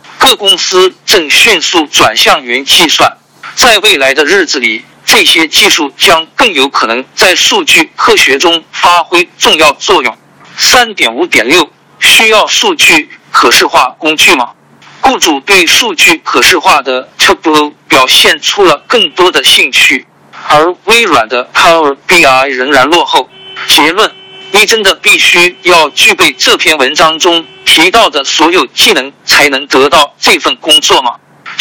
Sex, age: male, 50-69